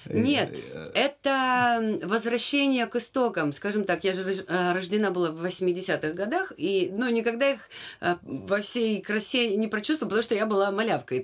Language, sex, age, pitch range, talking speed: Russian, female, 30-49, 175-230 Hz, 160 wpm